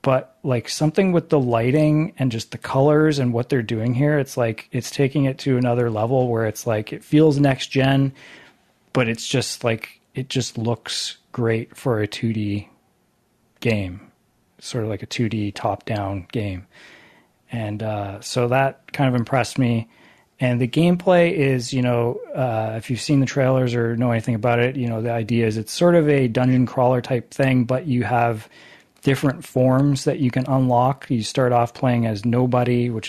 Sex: male